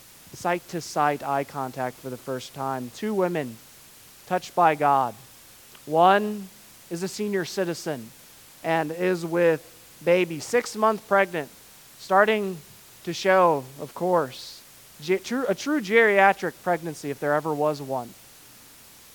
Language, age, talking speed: English, 20-39, 115 wpm